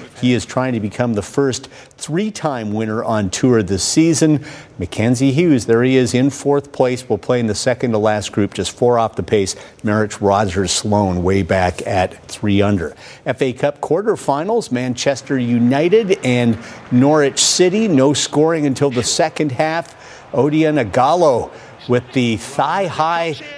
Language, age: English, 50-69